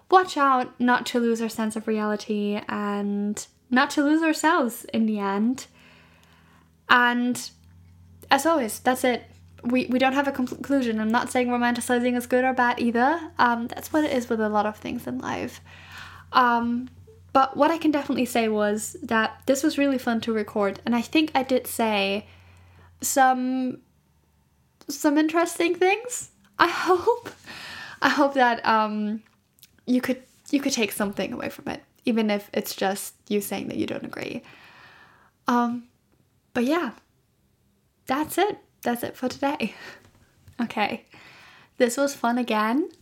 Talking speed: 160 wpm